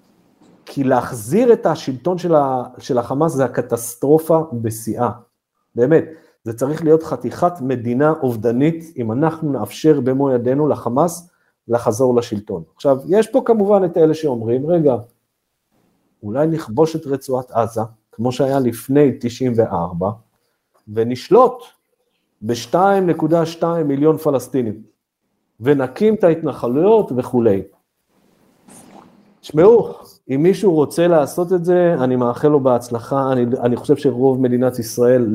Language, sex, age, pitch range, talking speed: Hebrew, male, 50-69, 120-155 Hz, 110 wpm